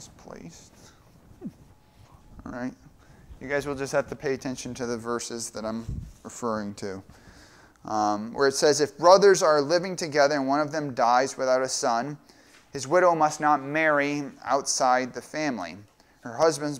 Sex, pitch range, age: male, 115-145 Hz, 30-49